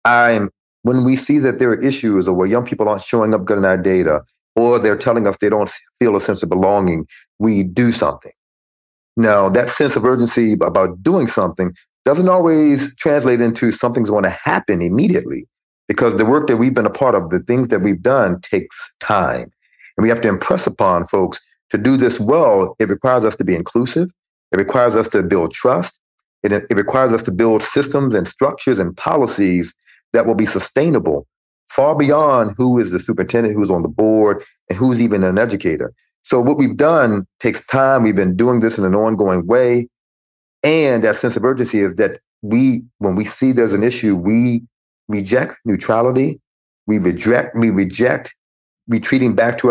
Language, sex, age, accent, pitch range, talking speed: English, male, 40-59, American, 100-125 Hz, 190 wpm